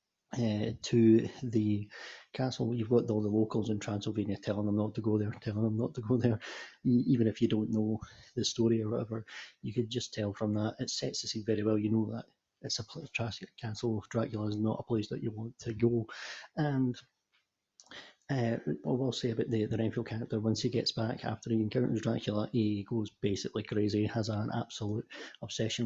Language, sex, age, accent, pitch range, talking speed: English, male, 30-49, British, 110-125 Hz, 205 wpm